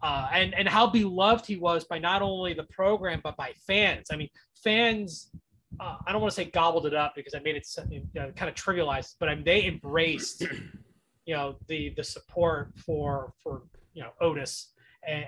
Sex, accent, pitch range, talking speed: male, American, 155-205 Hz, 205 wpm